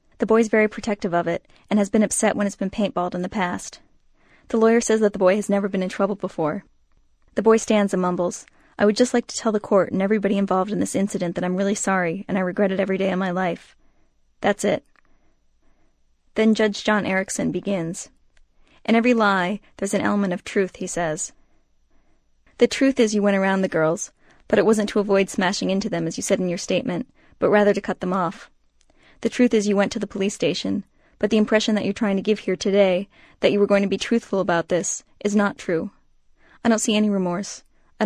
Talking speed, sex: 225 wpm, female